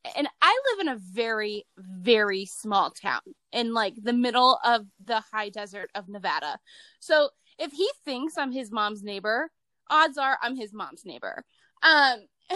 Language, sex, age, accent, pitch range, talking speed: English, female, 20-39, American, 220-310 Hz, 160 wpm